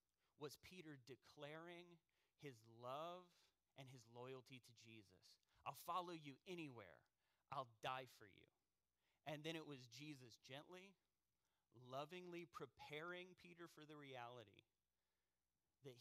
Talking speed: 115 wpm